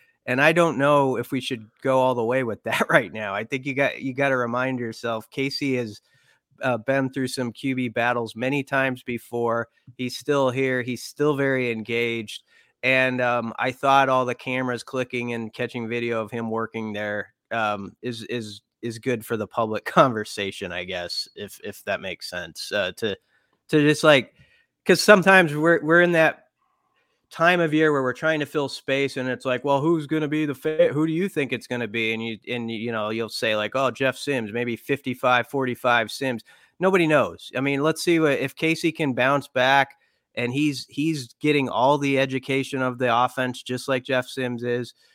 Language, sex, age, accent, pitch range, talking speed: English, male, 30-49, American, 120-140 Hz, 205 wpm